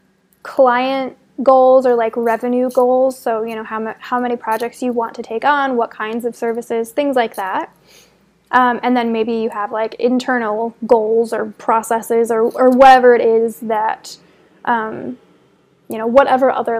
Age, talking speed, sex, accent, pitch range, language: 20-39, 170 wpm, female, American, 225-260 Hz, English